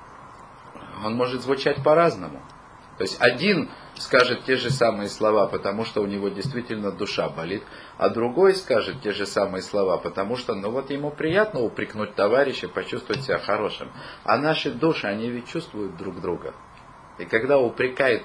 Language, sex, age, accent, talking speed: Russian, male, 40-59, native, 160 wpm